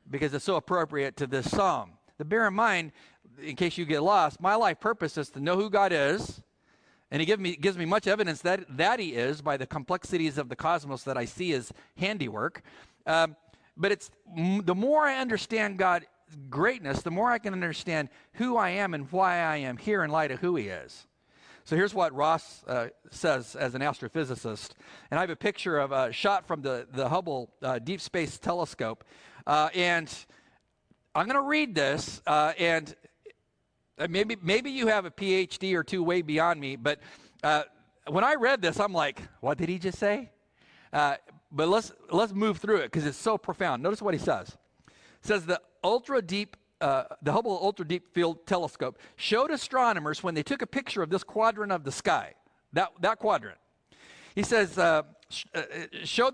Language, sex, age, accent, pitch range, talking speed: English, male, 50-69, American, 155-210 Hz, 195 wpm